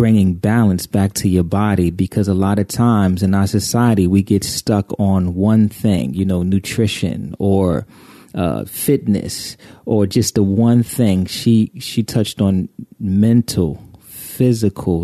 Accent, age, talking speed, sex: American, 30-49, 150 wpm, male